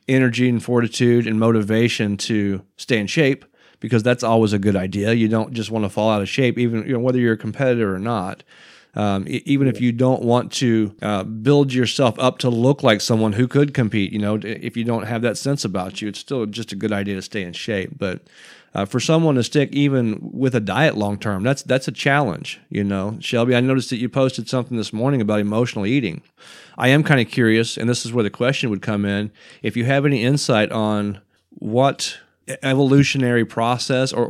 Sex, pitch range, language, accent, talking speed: male, 105-130 Hz, English, American, 215 wpm